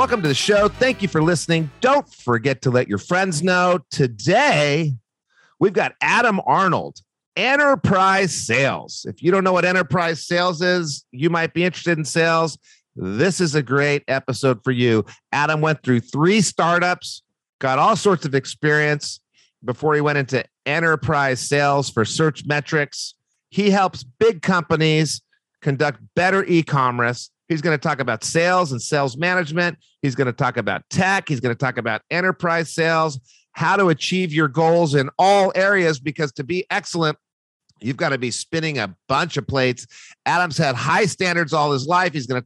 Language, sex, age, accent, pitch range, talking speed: English, male, 40-59, American, 130-170 Hz, 170 wpm